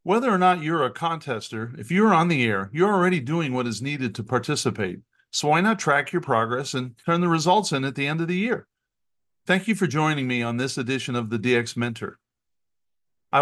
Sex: male